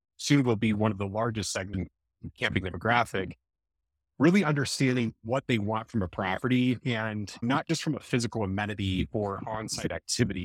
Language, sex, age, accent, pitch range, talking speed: English, male, 30-49, American, 105-135 Hz, 165 wpm